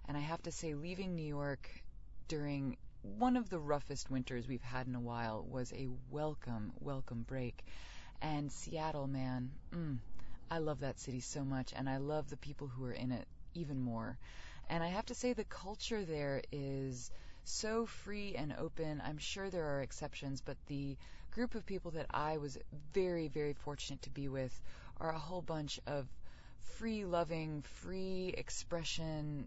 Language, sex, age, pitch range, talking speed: English, female, 20-39, 130-175 Hz, 170 wpm